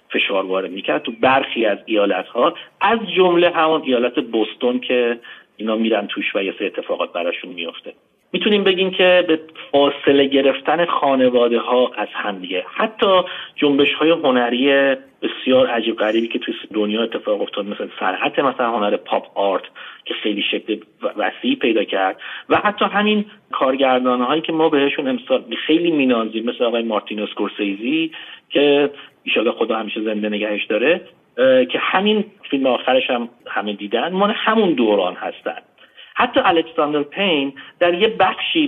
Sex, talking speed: male, 145 wpm